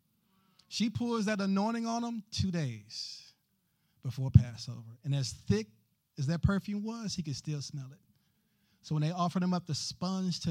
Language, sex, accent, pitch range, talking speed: English, male, American, 135-180 Hz, 175 wpm